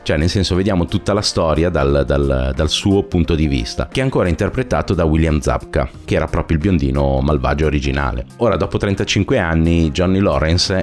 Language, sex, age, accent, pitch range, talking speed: Italian, male, 30-49, native, 75-95 Hz, 190 wpm